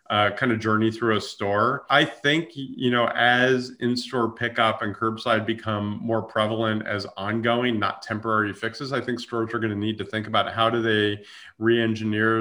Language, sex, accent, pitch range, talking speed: English, male, American, 100-115 Hz, 180 wpm